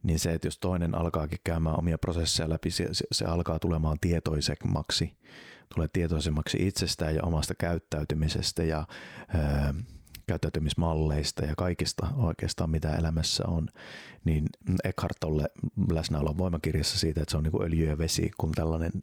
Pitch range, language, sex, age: 80-90 Hz, Finnish, male, 30-49